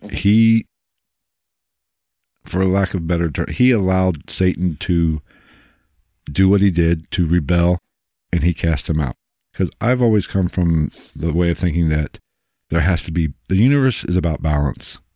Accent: American